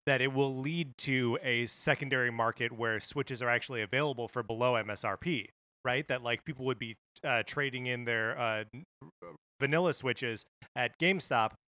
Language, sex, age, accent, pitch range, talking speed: English, male, 30-49, American, 115-140 Hz, 165 wpm